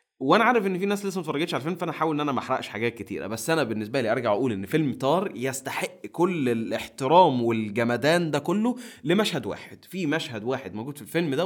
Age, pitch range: 20-39, 130-195 Hz